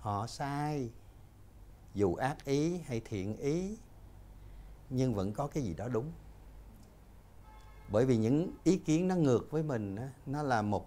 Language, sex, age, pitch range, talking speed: Vietnamese, male, 60-79, 95-125 Hz, 150 wpm